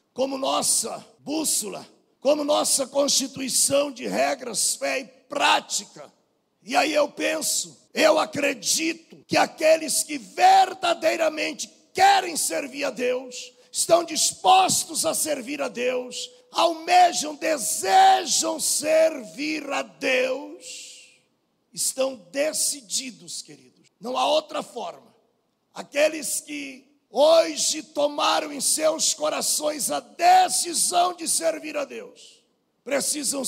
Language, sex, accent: Portuguese, male, Brazilian